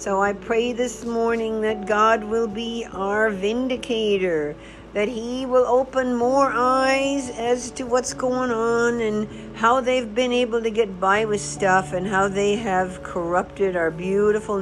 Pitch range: 180-235 Hz